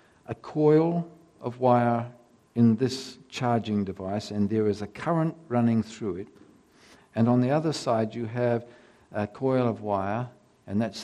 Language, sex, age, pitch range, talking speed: English, male, 60-79, 105-135 Hz, 160 wpm